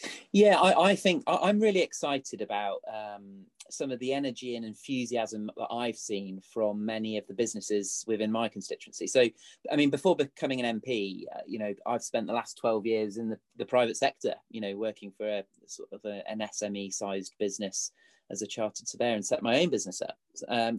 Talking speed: 200 wpm